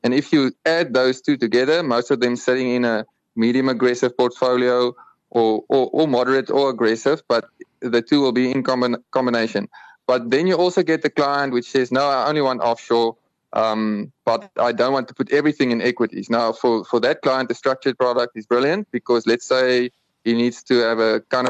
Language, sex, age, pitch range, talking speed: English, male, 20-39, 120-135 Hz, 200 wpm